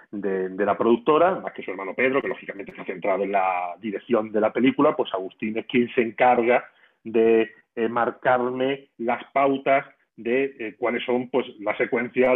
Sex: male